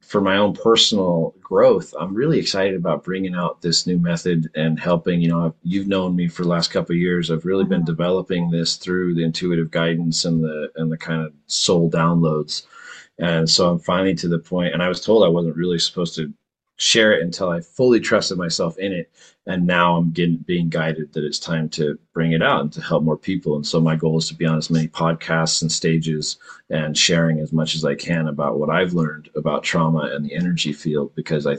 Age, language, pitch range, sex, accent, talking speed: 30-49, English, 80-90 Hz, male, American, 225 wpm